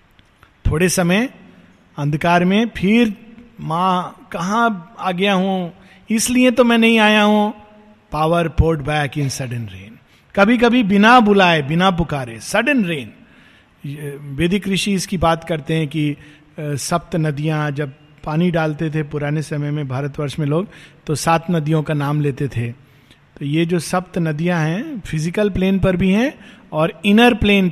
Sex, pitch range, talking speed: male, 160-225 Hz, 150 wpm